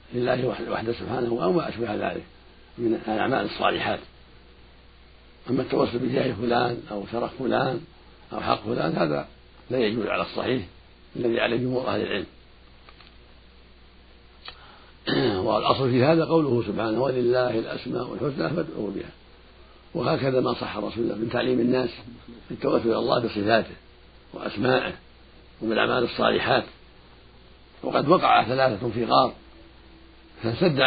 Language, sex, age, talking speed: Arabic, male, 60-79, 120 wpm